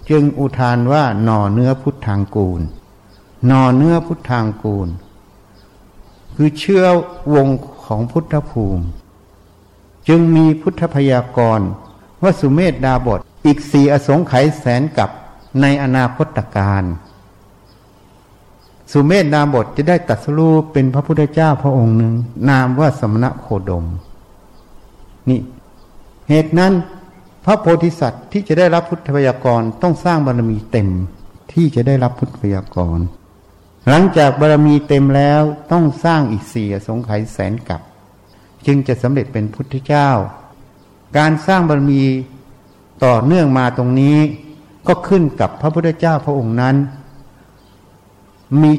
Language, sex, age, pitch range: Thai, male, 60-79, 100-150 Hz